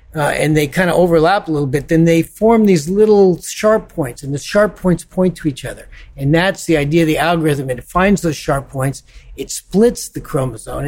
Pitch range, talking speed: 145-175 Hz, 220 wpm